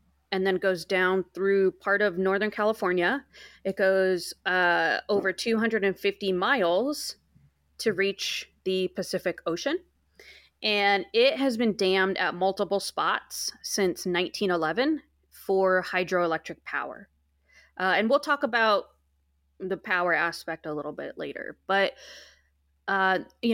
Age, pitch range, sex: 20-39, 175-210 Hz, female